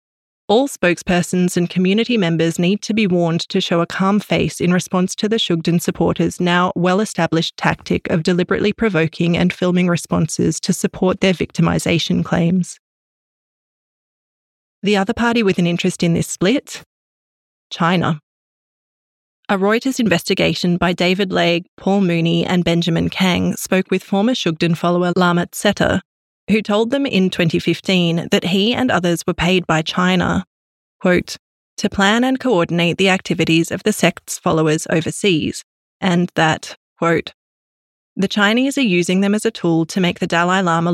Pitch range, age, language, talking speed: 170-200 Hz, 20-39, English, 150 wpm